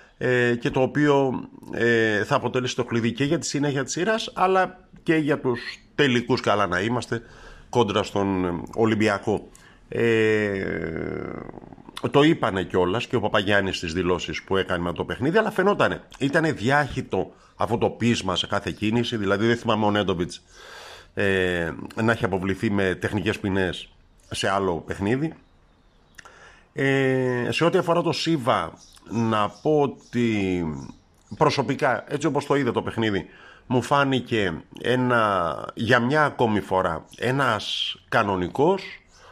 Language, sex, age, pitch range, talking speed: Greek, male, 50-69, 95-135 Hz, 130 wpm